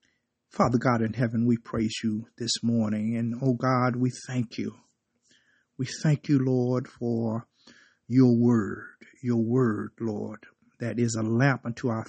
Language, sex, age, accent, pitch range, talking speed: English, male, 50-69, American, 115-130 Hz, 155 wpm